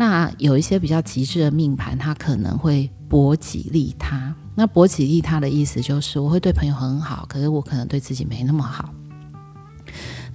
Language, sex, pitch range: Chinese, female, 125-155 Hz